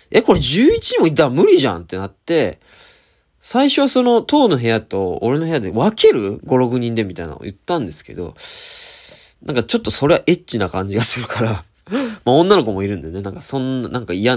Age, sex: 20-39, male